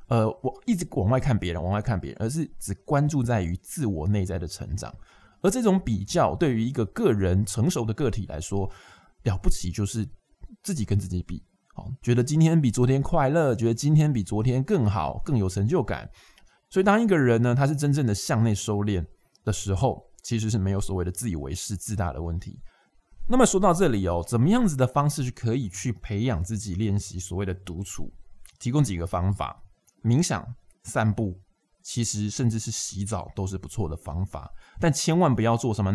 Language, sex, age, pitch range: Chinese, male, 20-39, 95-130 Hz